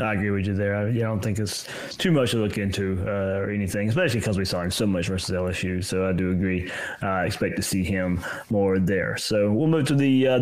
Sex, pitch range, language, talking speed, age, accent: male, 100-130 Hz, English, 250 wpm, 30-49, American